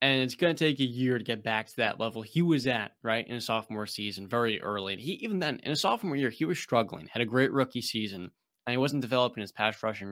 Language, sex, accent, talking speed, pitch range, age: English, male, American, 275 wpm, 110-140 Hz, 20-39